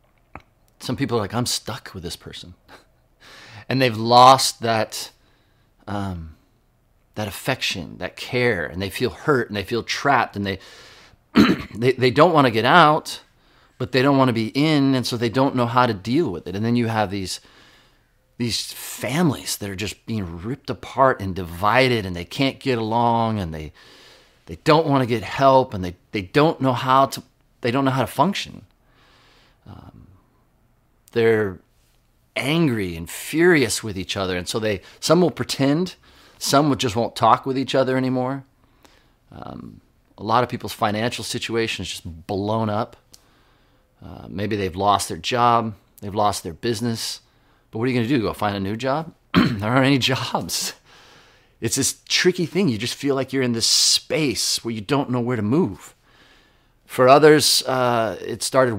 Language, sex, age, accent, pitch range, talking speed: English, male, 40-59, American, 105-130 Hz, 180 wpm